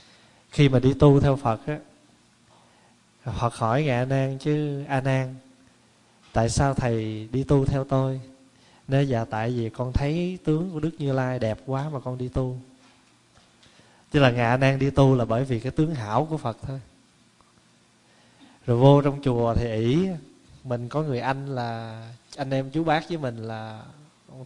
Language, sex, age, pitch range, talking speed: Vietnamese, male, 20-39, 115-140 Hz, 175 wpm